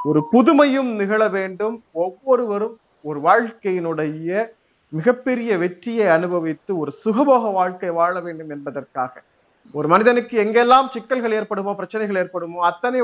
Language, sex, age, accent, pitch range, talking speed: Tamil, male, 30-49, native, 175-235 Hz, 110 wpm